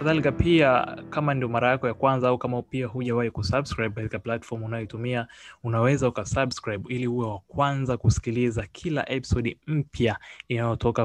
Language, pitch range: Swahili, 110-130 Hz